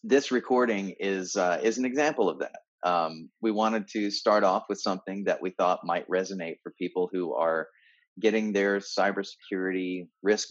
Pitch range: 95-120 Hz